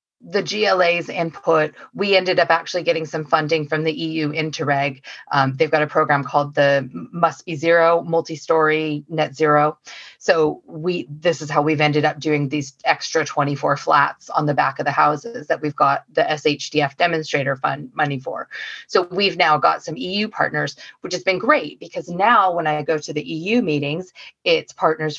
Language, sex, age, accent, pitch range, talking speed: English, female, 30-49, American, 150-180 Hz, 185 wpm